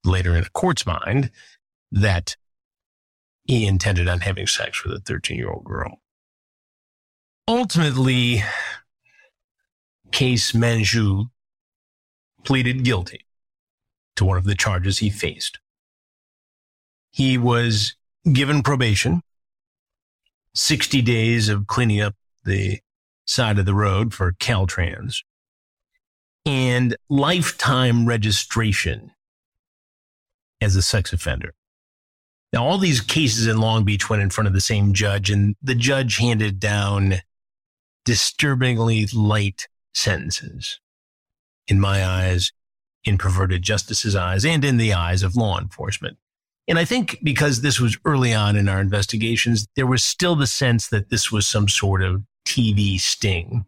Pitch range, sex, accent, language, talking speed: 95-120 Hz, male, American, English, 125 wpm